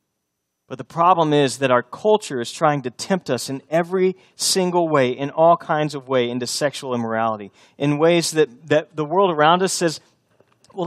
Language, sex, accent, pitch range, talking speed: English, male, American, 130-190 Hz, 190 wpm